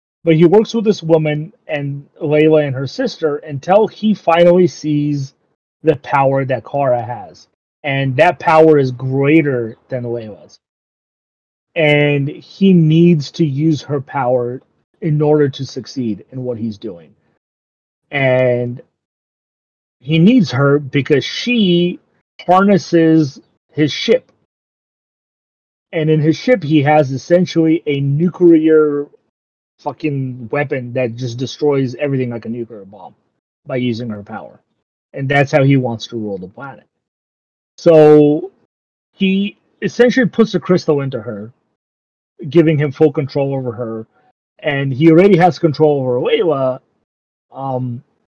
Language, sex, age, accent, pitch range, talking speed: English, male, 30-49, American, 130-165 Hz, 130 wpm